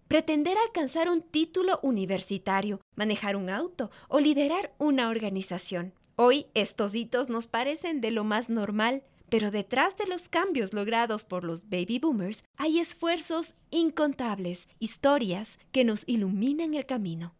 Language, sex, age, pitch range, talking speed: Spanish, female, 20-39, 205-295 Hz, 140 wpm